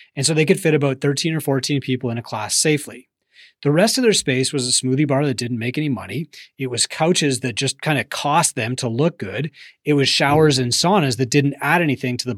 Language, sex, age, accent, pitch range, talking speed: English, male, 30-49, American, 120-150 Hz, 245 wpm